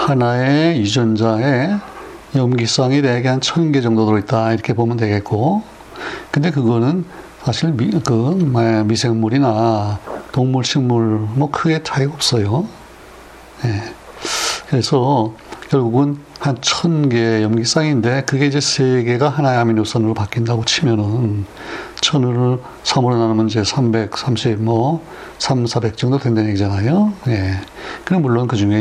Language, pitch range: Korean, 110-135 Hz